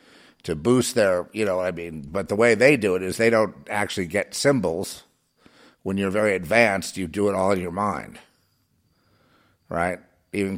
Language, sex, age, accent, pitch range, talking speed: English, male, 50-69, American, 90-105 Hz, 185 wpm